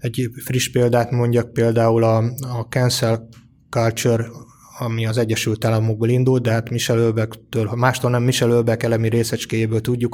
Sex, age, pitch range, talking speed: male, 20-39, 110-120 Hz, 140 wpm